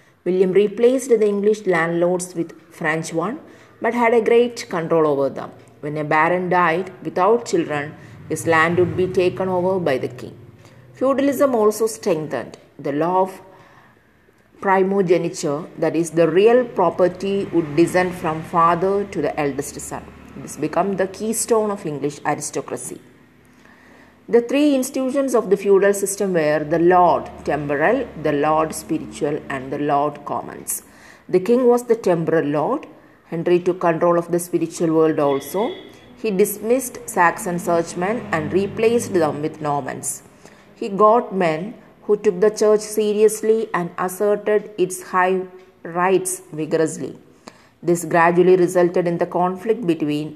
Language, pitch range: English, 160-210 Hz